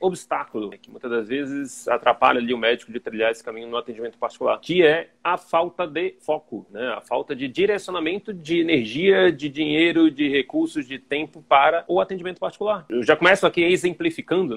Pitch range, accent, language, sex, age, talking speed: 140-195 Hz, Brazilian, Portuguese, male, 30-49, 180 wpm